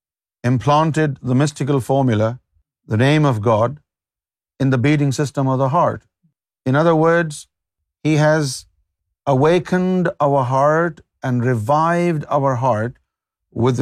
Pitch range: 115-165 Hz